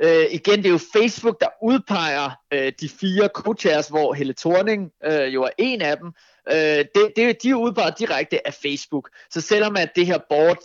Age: 30-49